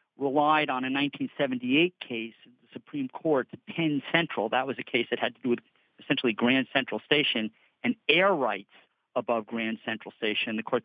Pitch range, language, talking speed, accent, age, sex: 115-165 Hz, English, 175 wpm, American, 50-69, male